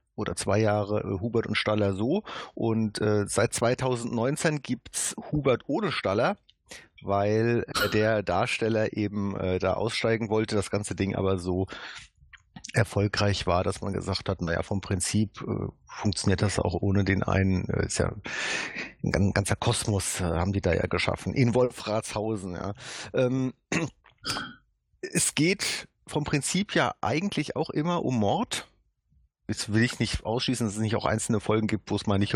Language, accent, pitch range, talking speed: German, German, 100-125 Hz, 165 wpm